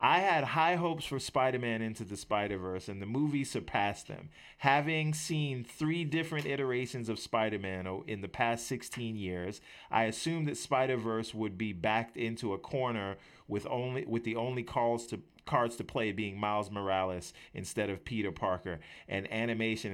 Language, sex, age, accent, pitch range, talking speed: English, male, 40-59, American, 100-130 Hz, 165 wpm